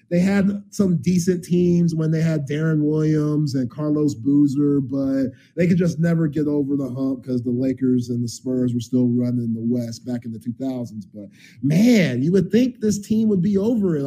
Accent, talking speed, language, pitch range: American, 205 wpm, English, 145-210 Hz